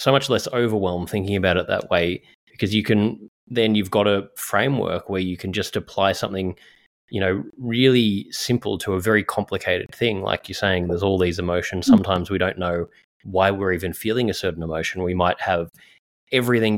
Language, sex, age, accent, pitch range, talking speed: English, male, 20-39, Australian, 90-105 Hz, 195 wpm